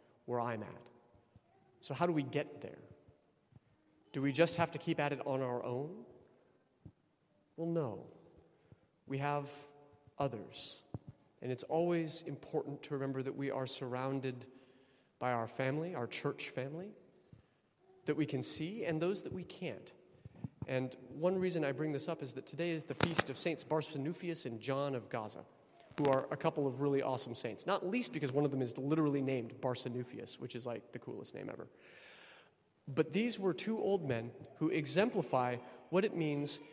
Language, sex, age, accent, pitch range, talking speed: English, male, 40-59, American, 130-160 Hz, 175 wpm